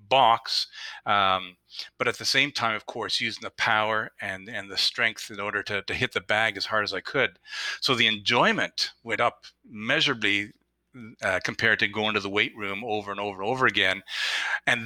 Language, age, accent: English, 40-59, American